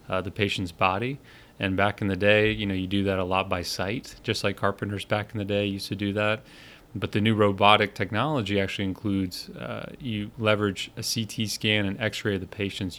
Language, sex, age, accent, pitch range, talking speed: English, male, 30-49, American, 95-110 Hz, 215 wpm